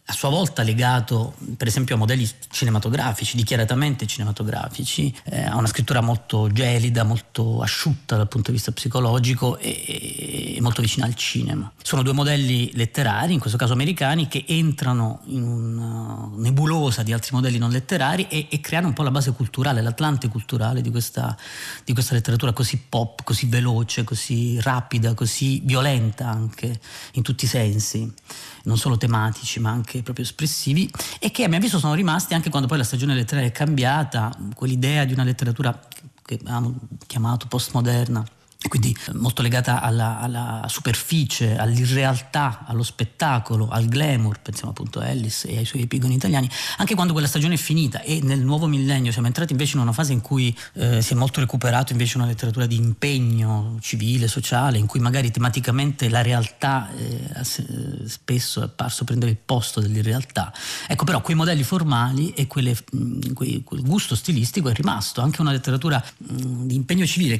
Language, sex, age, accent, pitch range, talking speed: Italian, male, 30-49, native, 115-140 Hz, 165 wpm